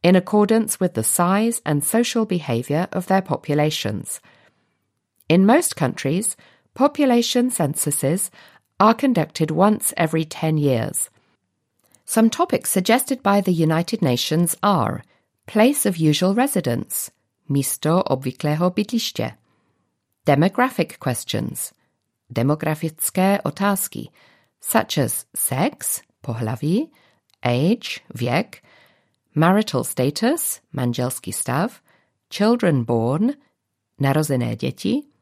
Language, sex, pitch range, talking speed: Czech, female, 135-205 Hz, 90 wpm